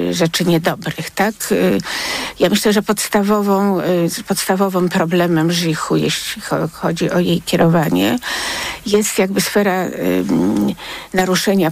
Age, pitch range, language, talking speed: 50-69, 160-200 Hz, Polish, 95 wpm